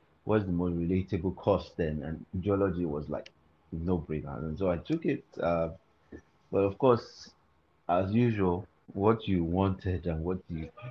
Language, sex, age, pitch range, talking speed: English, male, 30-49, 80-100 Hz, 160 wpm